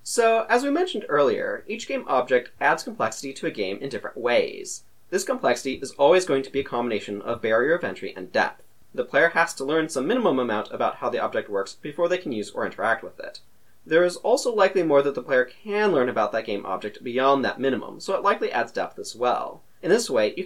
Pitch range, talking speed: 125-205 Hz, 235 wpm